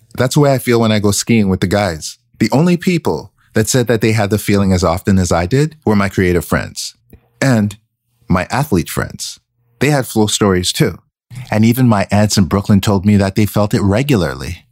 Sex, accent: male, American